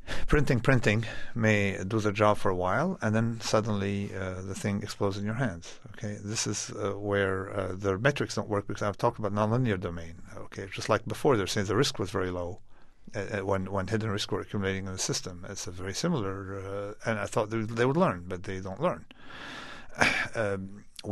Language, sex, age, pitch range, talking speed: English, male, 50-69, 95-110 Hz, 205 wpm